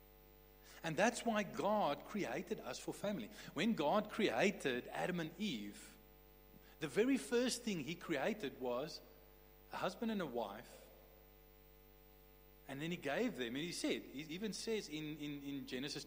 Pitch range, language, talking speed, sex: 145-210 Hz, English, 155 wpm, male